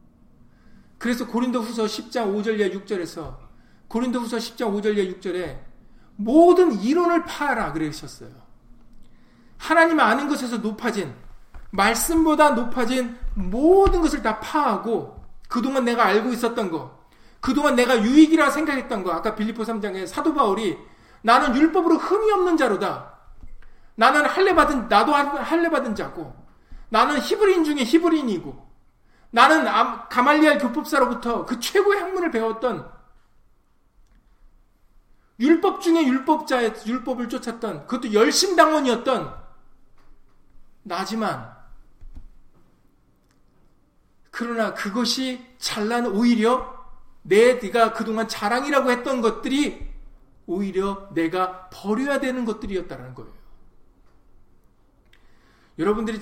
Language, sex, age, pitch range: Korean, male, 40-59, 210-290 Hz